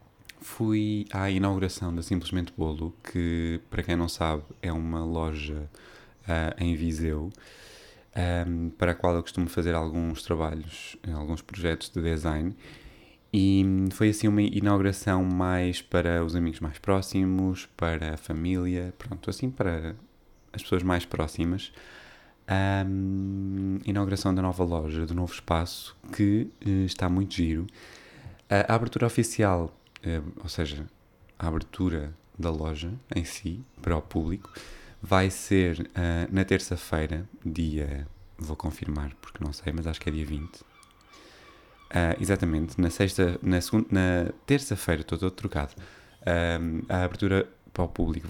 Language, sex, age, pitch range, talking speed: Portuguese, male, 20-39, 80-95 Hz, 140 wpm